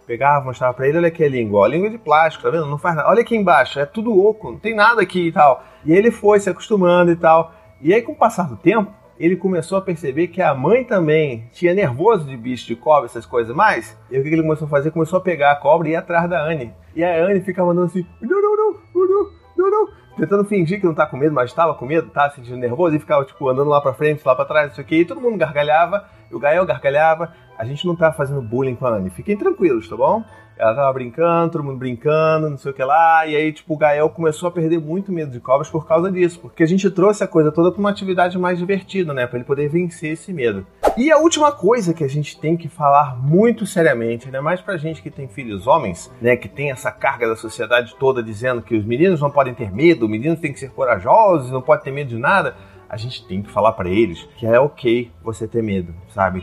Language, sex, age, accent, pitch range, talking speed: Portuguese, male, 30-49, Brazilian, 130-180 Hz, 255 wpm